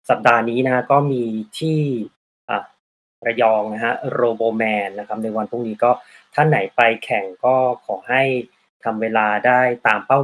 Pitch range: 115-140 Hz